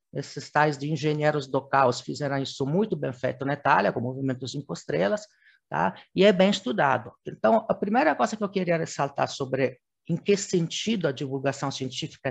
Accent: Brazilian